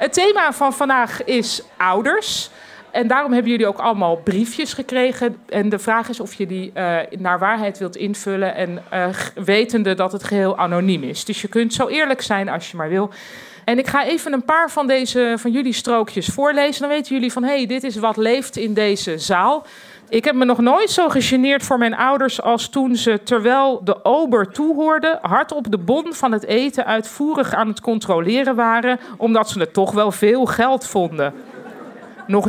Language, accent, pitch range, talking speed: Dutch, Dutch, 195-260 Hz, 200 wpm